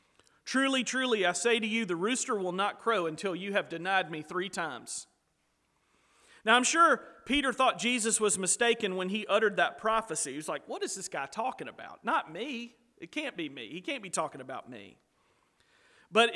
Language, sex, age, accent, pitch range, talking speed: English, male, 40-59, American, 180-235 Hz, 195 wpm